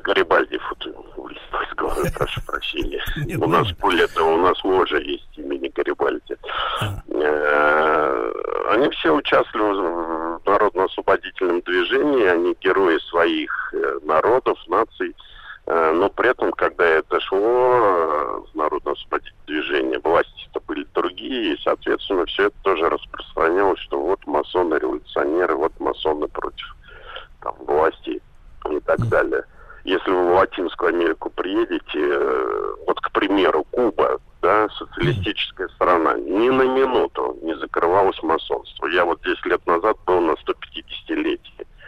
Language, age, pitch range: Russian, 50-69, 345-425 Hz